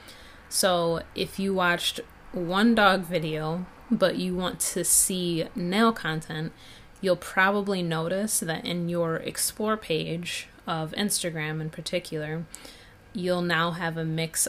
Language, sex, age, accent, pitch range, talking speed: English, female, 20-39, American, 160-195 Hz, 130 wpm